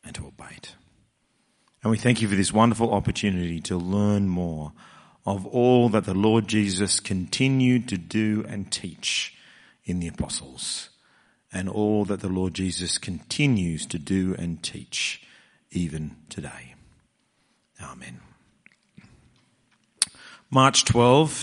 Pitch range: 105-130 Hz